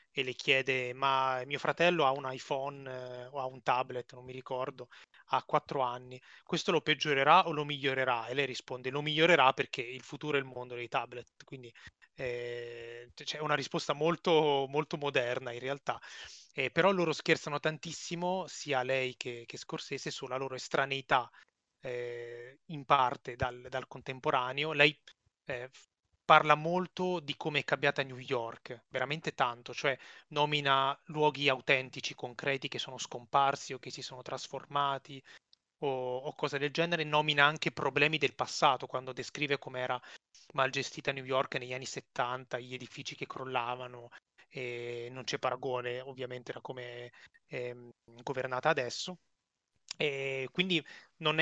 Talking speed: 155 wpm